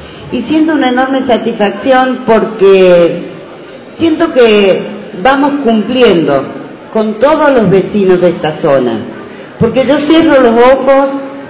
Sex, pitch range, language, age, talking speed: female, 195-235 Hz, English, 40-59, 115 wpm